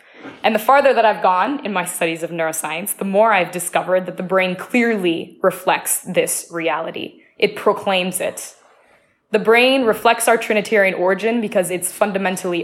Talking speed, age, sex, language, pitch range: 160 wpm, 20-39, female, English, 175-225 Hz